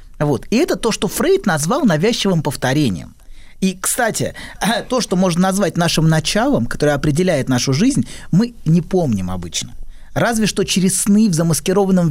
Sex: male